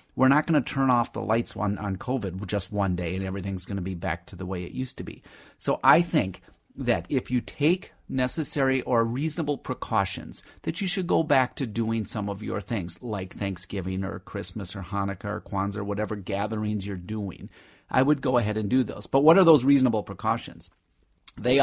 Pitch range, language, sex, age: 100-130 Hz, English, male, 30-49